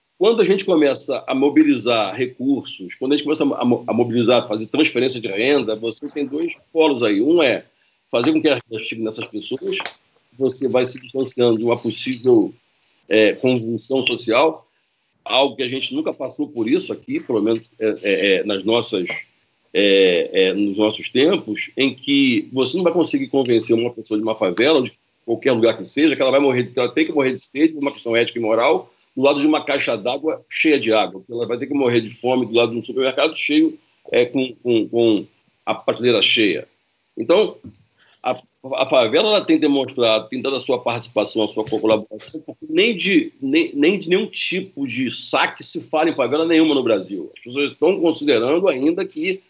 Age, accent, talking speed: 50-69, Brazilian, 195 wpm